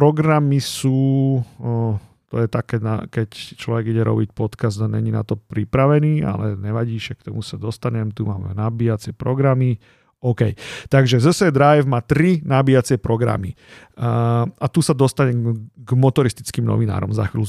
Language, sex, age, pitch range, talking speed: Slovak, male, 40-59, 115-140 Hz, 155 wpm